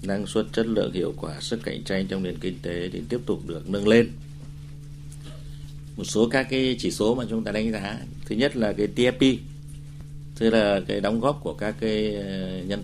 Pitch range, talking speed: 100-145 Hz, 205 wpm